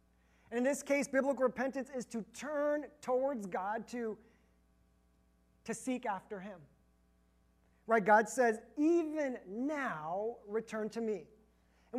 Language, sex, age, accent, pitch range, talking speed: English, male, 30-49, American, 170-255 Hz, 120 wpm